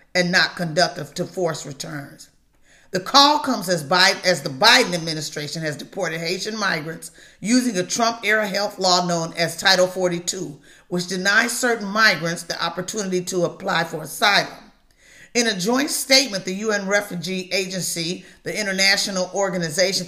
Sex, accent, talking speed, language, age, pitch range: female, American, 145 wpm, English, 40-59, 165-205 Hz